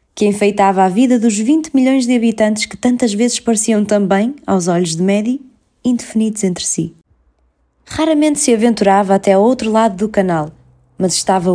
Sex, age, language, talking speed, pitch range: female, 20-39, Portuguese, 165 wpm, 190-255 Hz